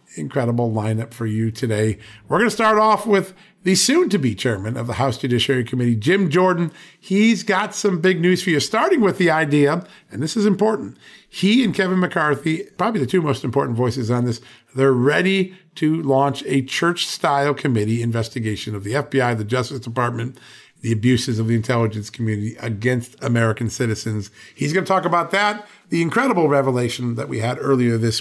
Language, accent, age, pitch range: English, American, 50-69, 120-180 Hz